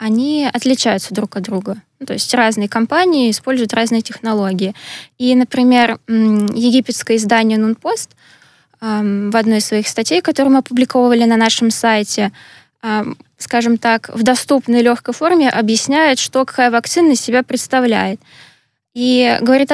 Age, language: 20-39, Russian